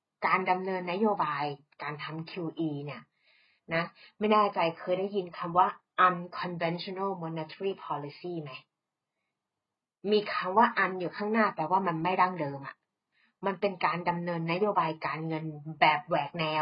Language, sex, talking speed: English, female, 35 wpm